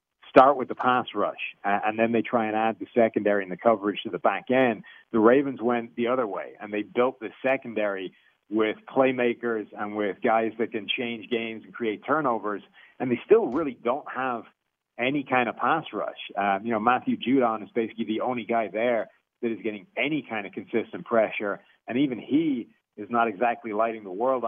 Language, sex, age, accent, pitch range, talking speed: English, male, 40-59, American, 105-125 Hz, 205 wpm